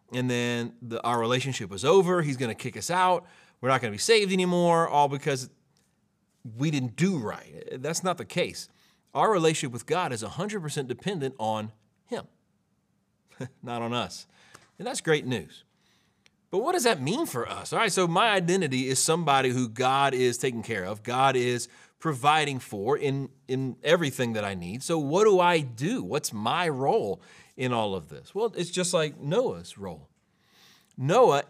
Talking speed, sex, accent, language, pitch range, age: 175 wpm, male, American, English, 125-170 Hz, 30-49